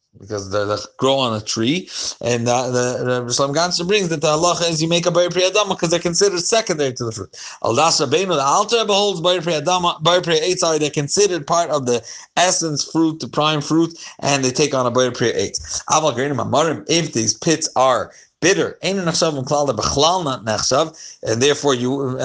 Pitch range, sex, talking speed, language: 130-170 Hz, male, 185 wpm, English